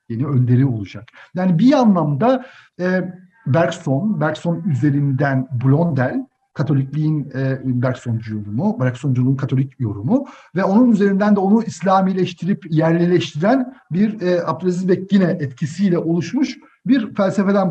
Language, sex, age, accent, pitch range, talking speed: Turkish, male, 60-79, native, 135-180 Hz, 110 wpm